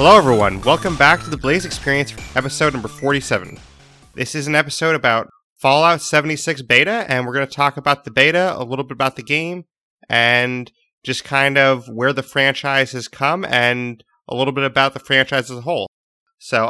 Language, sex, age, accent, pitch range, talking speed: English, male, 30-49, American, 125-150 Hz, 190 wpm